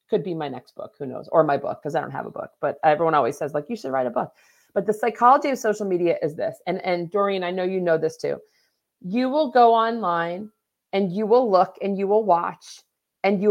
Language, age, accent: English, 40-59, American